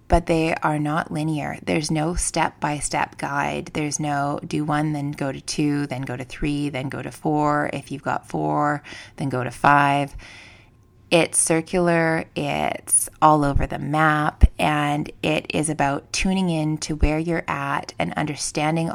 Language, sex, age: English, female, 20-39